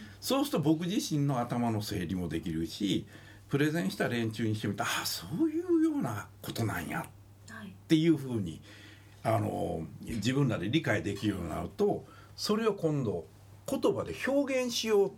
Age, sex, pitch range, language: 60-79, male, 105-165 Hz, Japanese